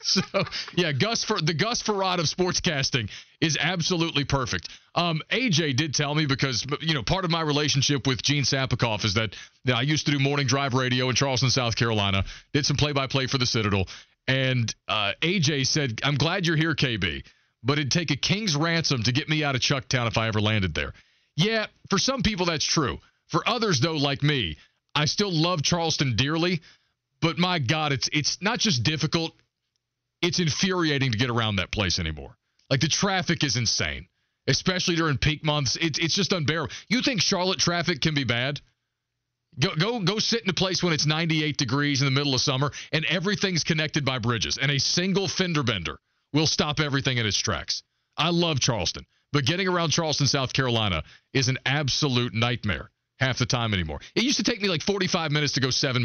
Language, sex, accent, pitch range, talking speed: English, male, American, 125-170 Hz, 200 wpm